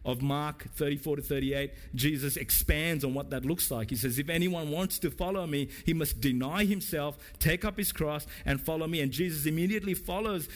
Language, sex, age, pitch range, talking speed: English, male, 50-69, 135-210 Hz, 200 wpm